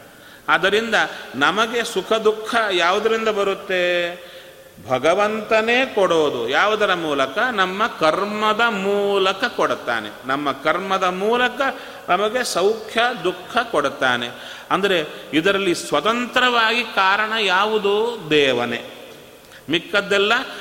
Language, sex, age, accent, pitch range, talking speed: Kannada, male, 40-59, native, 150-220 Hz, 80 wpm